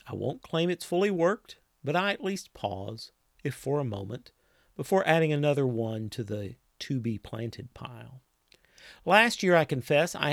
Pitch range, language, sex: 120-170 Hz, English, male